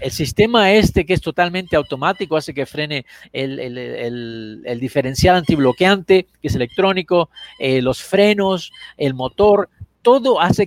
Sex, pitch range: male, 140-200 Hz